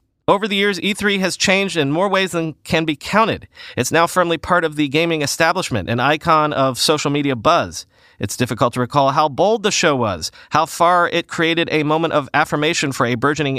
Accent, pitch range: American, 120-170 Hz